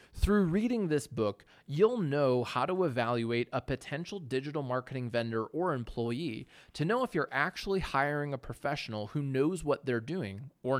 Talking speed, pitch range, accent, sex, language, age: 165 wpm, 120-170 Hz, American, male, English, 30-49